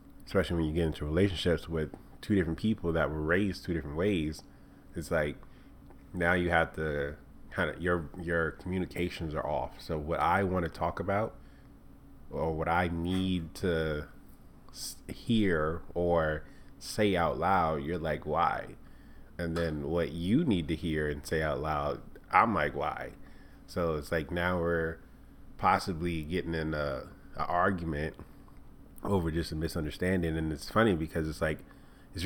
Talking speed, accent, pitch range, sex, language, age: 160 wpm, American, 75-90 Hz, male, English, 30-49